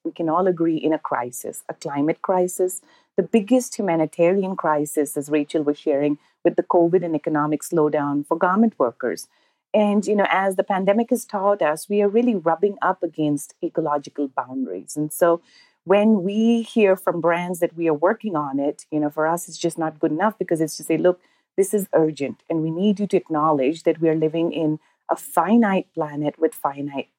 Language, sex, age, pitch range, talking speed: English, female, 30-49, 155-200 Hz, 200 wpm